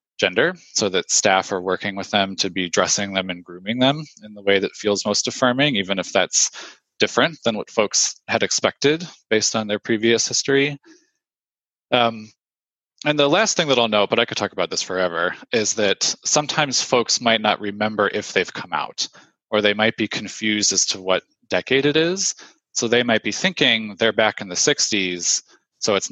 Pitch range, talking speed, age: 95-120 Hz, 195 wpm, 20-39